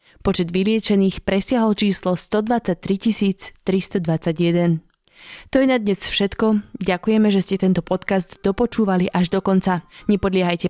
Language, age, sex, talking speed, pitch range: Slovak, 20-39, female, 120 wpm, 180-215 Hz